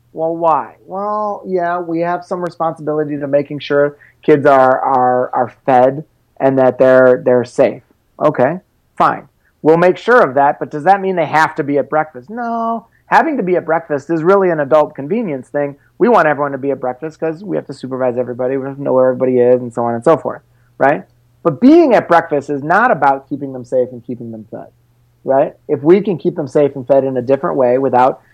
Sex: male